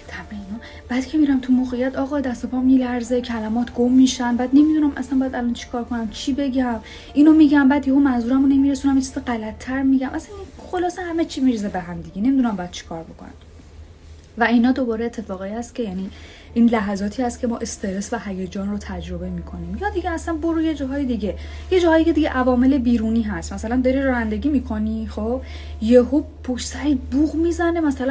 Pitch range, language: 190-270 Hz, Persian